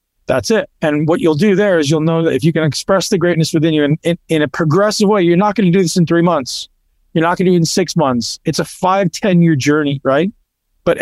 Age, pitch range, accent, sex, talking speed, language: 40-59, 145-190 Hz, American, male, 270 wpm, English